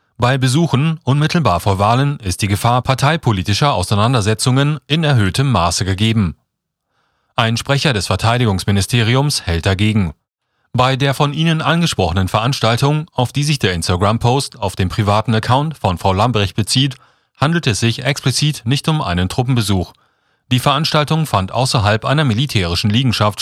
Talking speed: 140 wpm